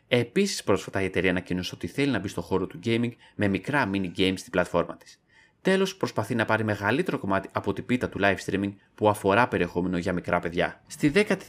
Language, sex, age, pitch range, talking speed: Greek, male, 30-49, 90-115 Hz, 210 wpm